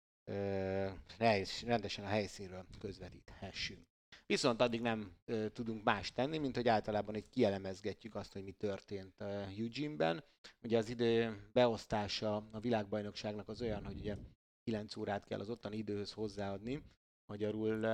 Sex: male